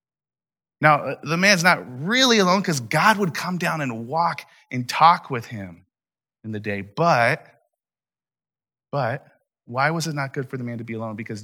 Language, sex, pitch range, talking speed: English, male, 110-145 Hz, 180 wpm